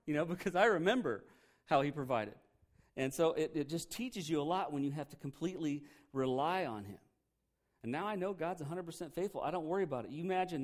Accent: American